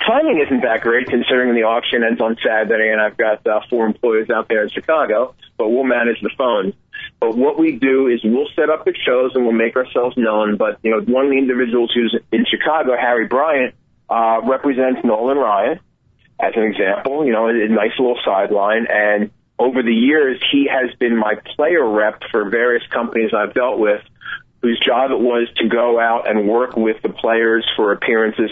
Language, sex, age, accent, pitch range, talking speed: English, male, 40-59, American, 110-125 Hz, 200 wpm